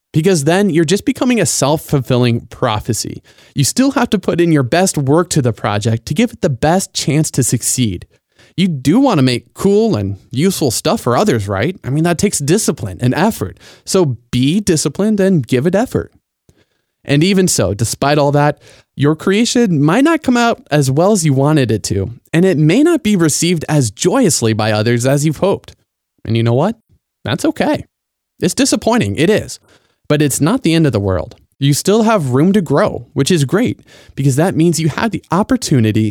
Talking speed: 200 wpm